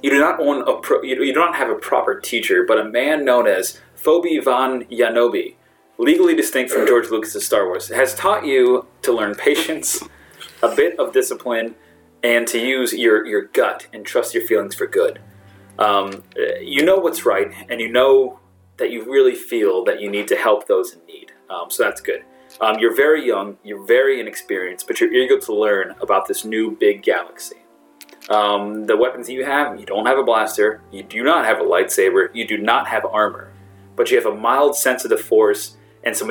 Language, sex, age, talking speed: English, male, 30-49, 205 wpm